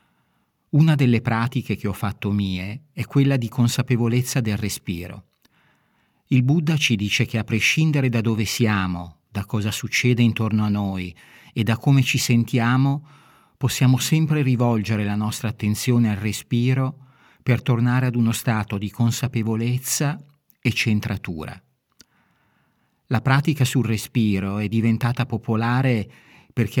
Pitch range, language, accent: 105-130 Hz, Italian, native